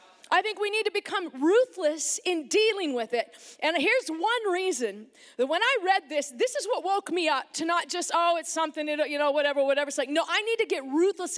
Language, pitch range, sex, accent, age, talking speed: English, 295-385 Hz, female, American, 40-59, 230 wpm